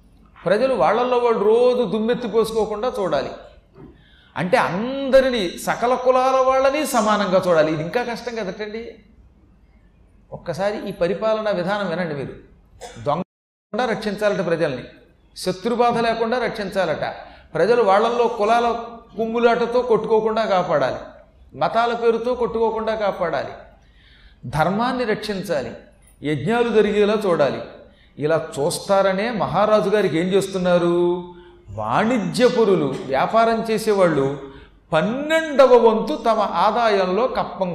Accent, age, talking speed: native, 40-59, 95 wpm